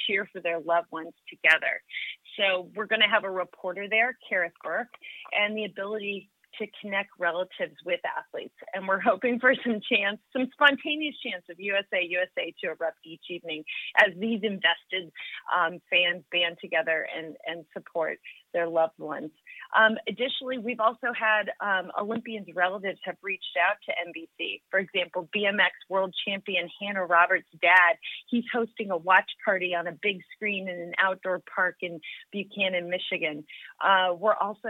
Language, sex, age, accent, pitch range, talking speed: English, female, 30-49, American, 180-215 Hz, 160 wpm